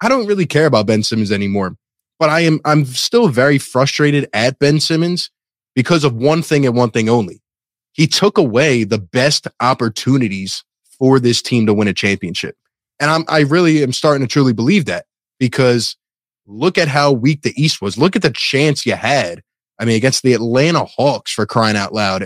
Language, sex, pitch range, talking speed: English, male, 115-150 Hz, 195 wpm